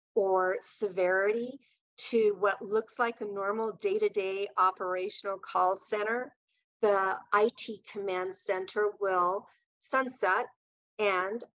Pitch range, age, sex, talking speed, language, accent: 185-235 Hz, 40-59, female, 100 wpm, English, American